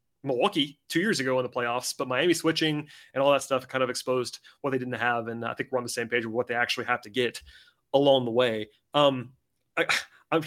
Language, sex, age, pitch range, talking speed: English, male, 30-49, 125-155 Hz, 230 wpm